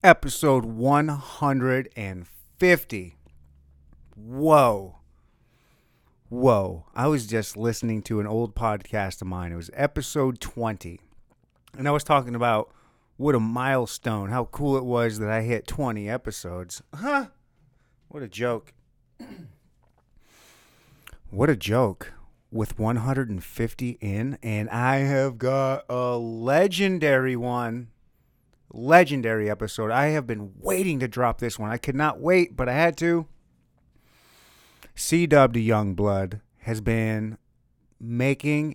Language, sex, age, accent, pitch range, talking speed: English, male, 30-49, American, 105-135 Hz, 120 wpm